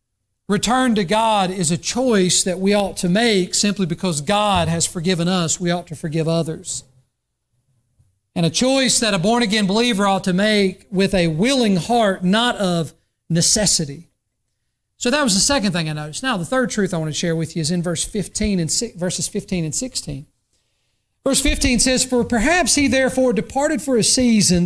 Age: 40-59